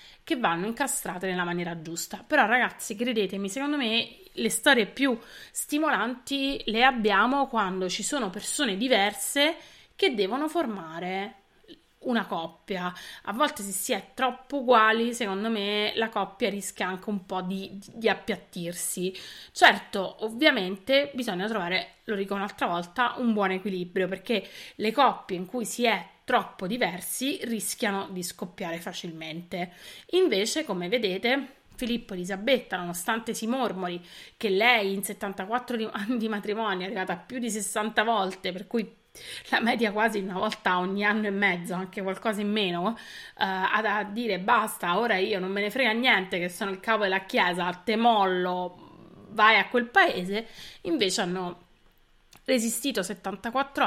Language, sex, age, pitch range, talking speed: Italian, female, 30-49, 190-230 Hz, 155 wpm